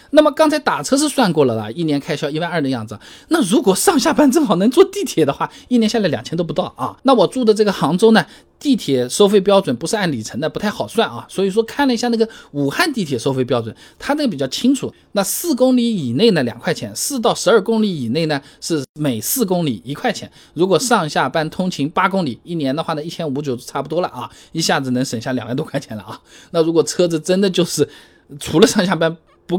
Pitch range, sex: 135-220 Hz, male